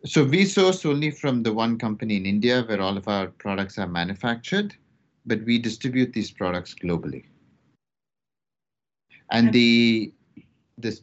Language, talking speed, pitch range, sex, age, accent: English, 140 wpm, 110-135 Hz, male, 30-49, Indian